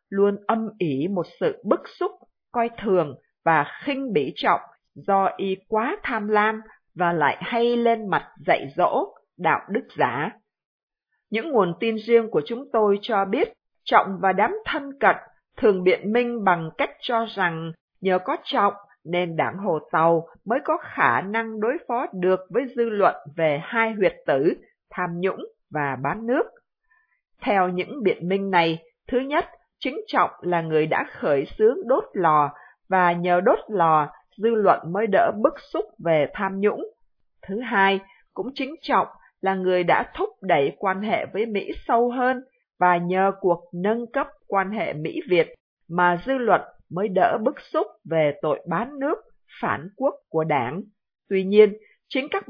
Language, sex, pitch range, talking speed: Vietnamese, female, 180-250 Hz, 170 wpm